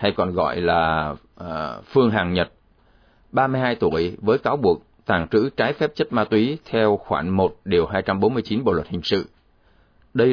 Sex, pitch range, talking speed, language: male, 100-115 Hz, 175 wpm, Vietnamese